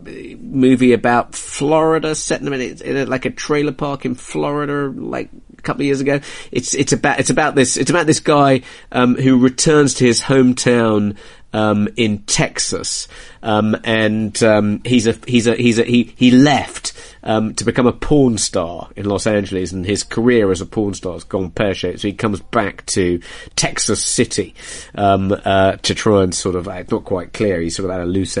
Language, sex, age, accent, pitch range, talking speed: English, male, 30-49, British, 95-120 Hz, 200 wpm